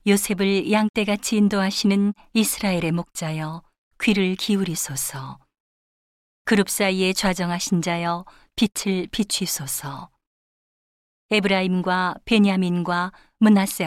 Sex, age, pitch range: female, 40-59, 175-205 Hz